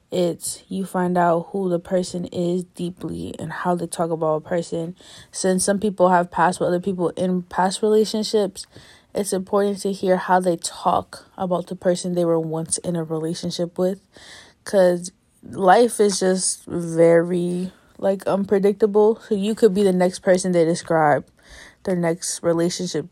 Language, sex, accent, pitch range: English, female, American, 165-185 Hz